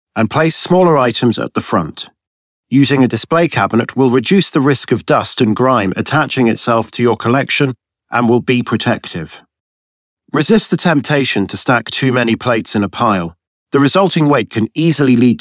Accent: British